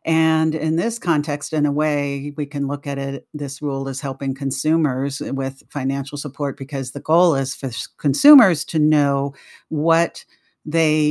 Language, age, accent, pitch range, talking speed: English, 50-69, American, 140-155 Hz, 160 wpm